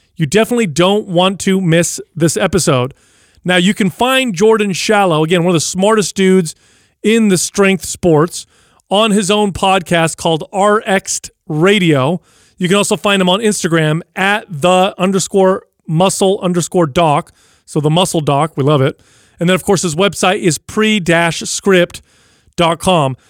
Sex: male